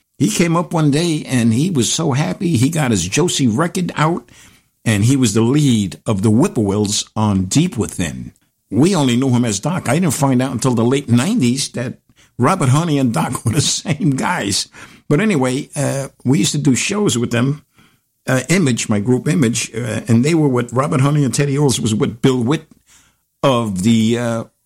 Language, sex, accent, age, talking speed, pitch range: English, male, American, 60-79, 200 wpm, 110-140 Hz